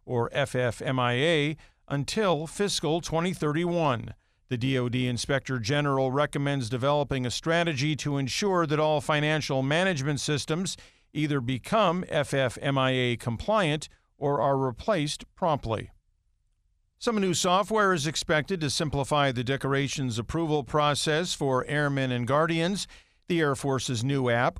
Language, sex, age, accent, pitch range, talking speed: English, male, 50-69, American, 130-165 Hz, 115 wpm